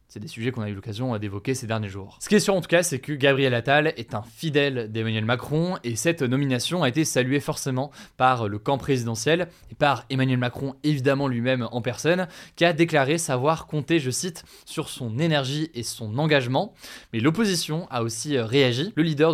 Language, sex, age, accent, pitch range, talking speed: French, male, 20-39, French, 120-150 Hz, 205 wpm